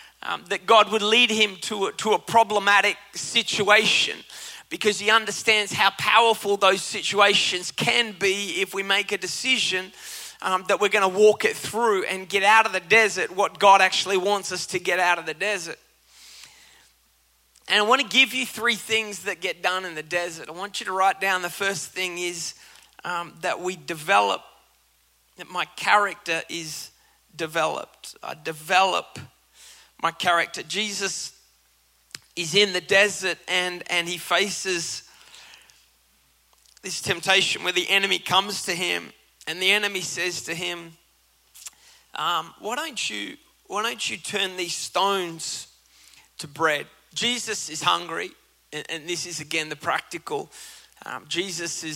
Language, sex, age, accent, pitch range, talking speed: English, male, 30-49, Australian, 160-205 Hz, 150 wpm